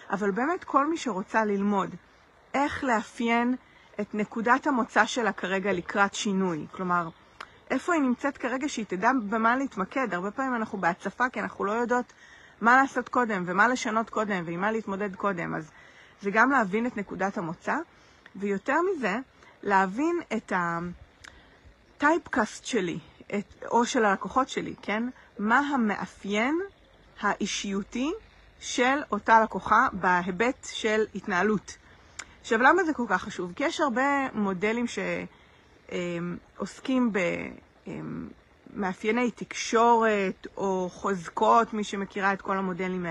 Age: 40-59